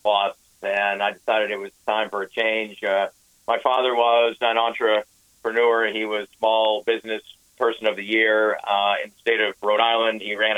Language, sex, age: Japanese, male, 50-69